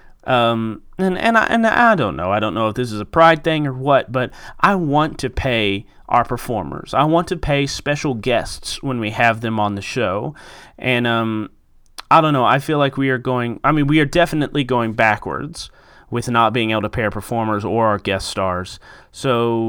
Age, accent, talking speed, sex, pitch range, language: 30-49, American, 215 wpm, male, 110-135 Hz, English